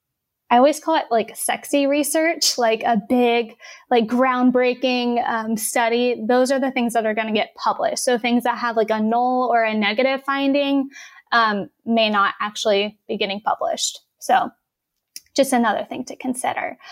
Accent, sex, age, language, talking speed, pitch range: American, female, 10-29, English, 170 wpm, 225-275 Hz